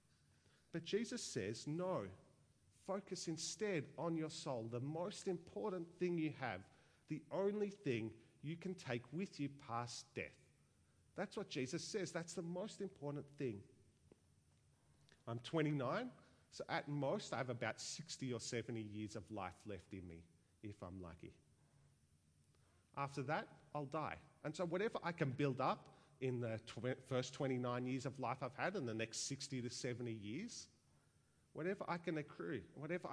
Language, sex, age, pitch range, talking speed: English, male, 40-59, 120-165 Hz, 155 wpm